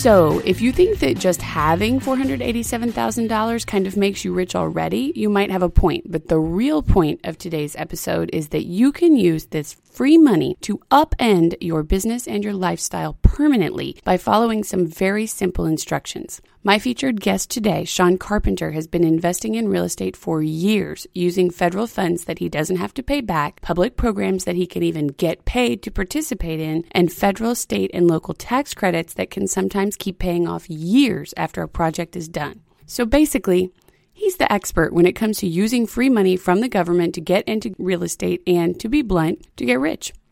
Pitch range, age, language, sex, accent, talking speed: 165-215 Hz, 30-49, English, female, American, 195 wpm